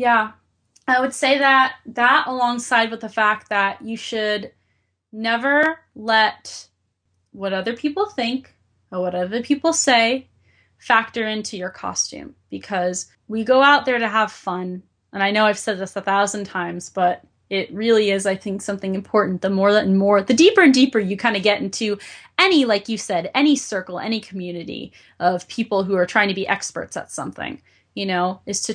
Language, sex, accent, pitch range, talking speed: English, female, American, 195-245 Hz, 185 wpm